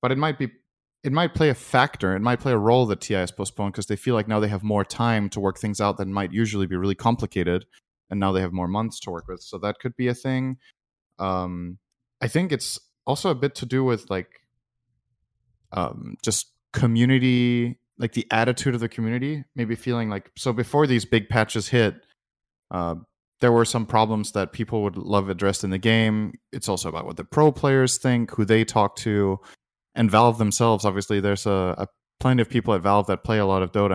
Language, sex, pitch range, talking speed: English, male, 100-120 Hz, 220 wpm